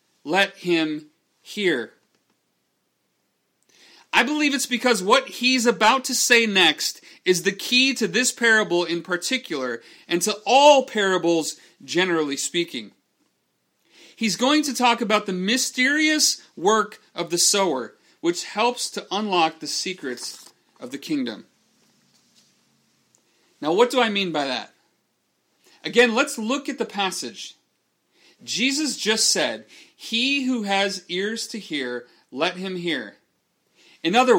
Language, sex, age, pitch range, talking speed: English, male, 40-59, 190-255 Hz, 130 wpm